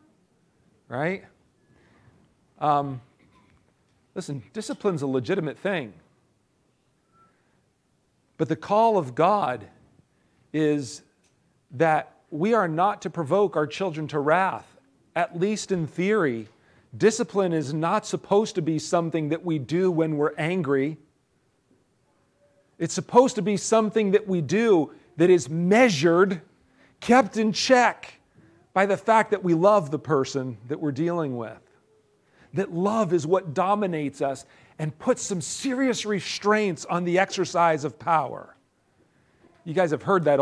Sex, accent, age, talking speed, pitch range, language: male, American, 40-59, 130 wpm, 125-190 Hz, English